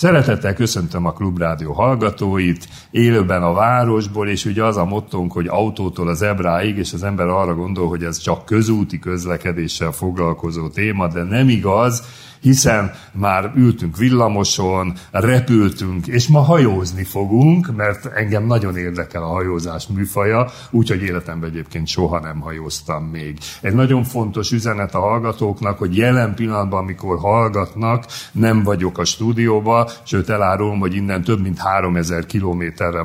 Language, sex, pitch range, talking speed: Hungarian, male, 90-115 Hz, 145 wpm